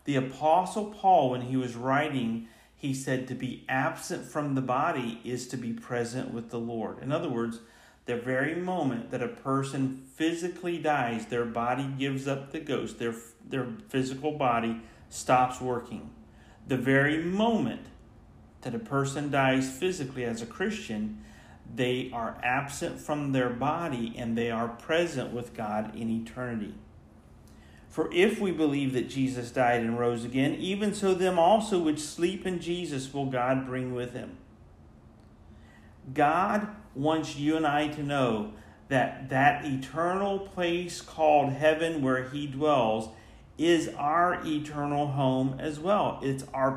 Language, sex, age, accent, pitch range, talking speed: English, male, 40-59, American, 125-160 Hz, 150 wpm